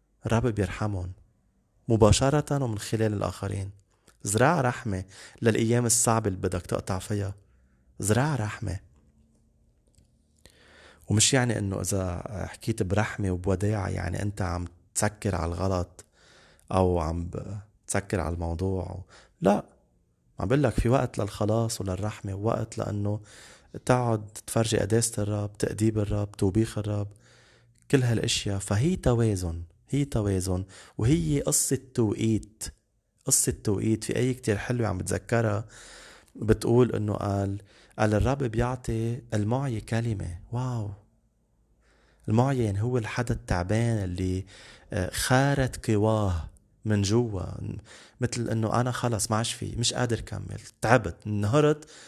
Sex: male